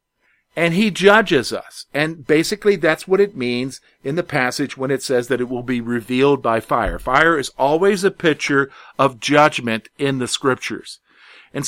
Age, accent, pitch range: 50-69, American, 145-200 Hz